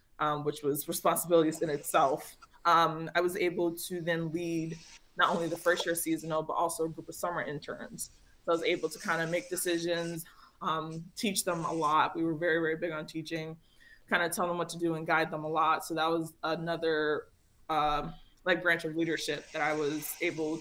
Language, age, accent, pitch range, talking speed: English, 20-39, American, 160-175 Hz, 210 wpm